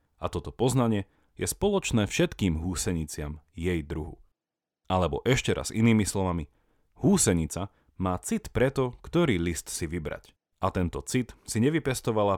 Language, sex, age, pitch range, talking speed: Slovak, male, 30-49, 85-115 Hz, 130 wpm